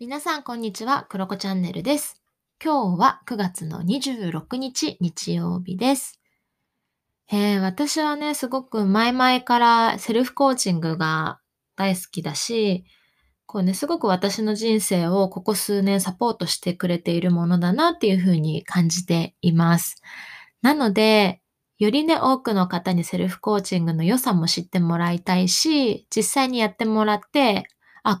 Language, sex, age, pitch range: Japanese, female, 20-39, 180-240 Hz